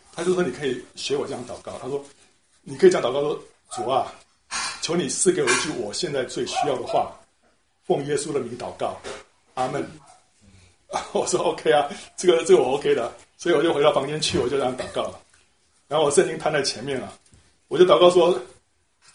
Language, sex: Chinese, male